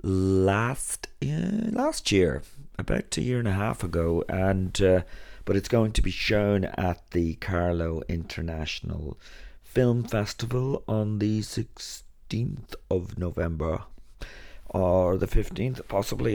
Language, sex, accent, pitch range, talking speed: English, male, British, 85-105 Hz, 125 wpm